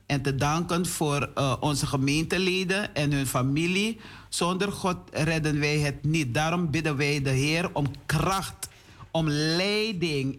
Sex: male